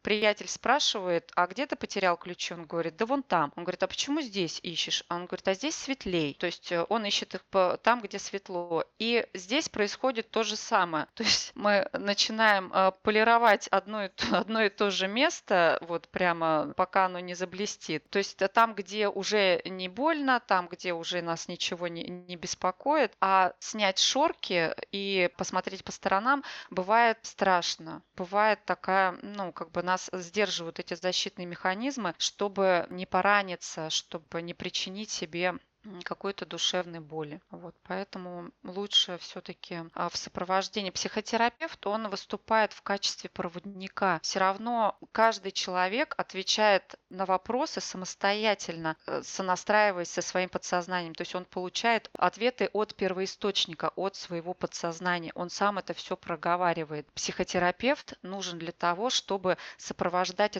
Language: Russian